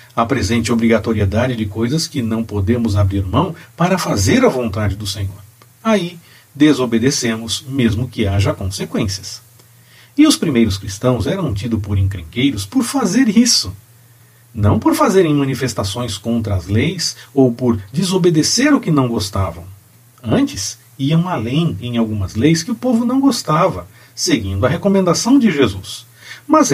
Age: 50-69